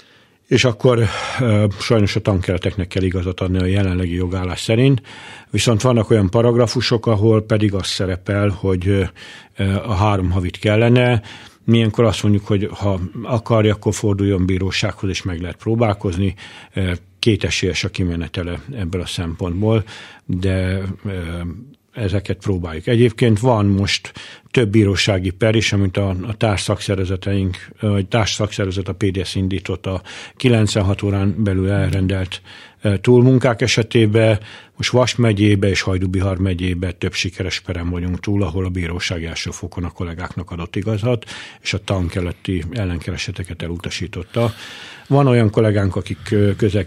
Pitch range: 95-110 Hz